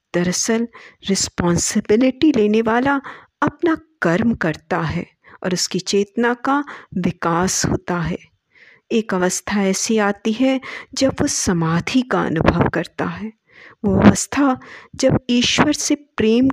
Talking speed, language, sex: 120 wpm, Hindi, female